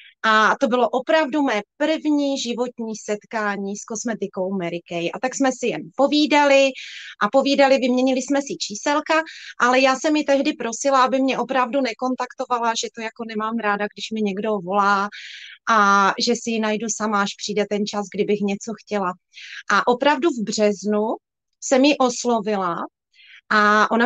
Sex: female